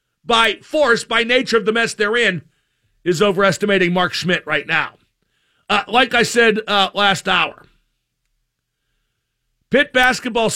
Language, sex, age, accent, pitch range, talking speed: English, male, 50-69, American, 185-230 Hz, 135 wpm